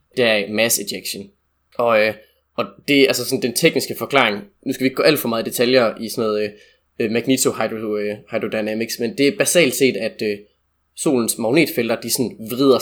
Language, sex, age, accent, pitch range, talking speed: Danish, male, 20-39, native, 105-135 Hz, 195 wpm